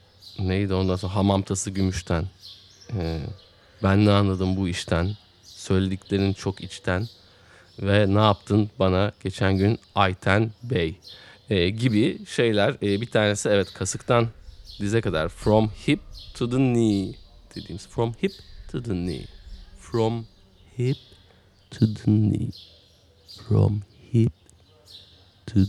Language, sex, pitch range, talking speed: Turkish, male, 95-115 Hz, 120 wpm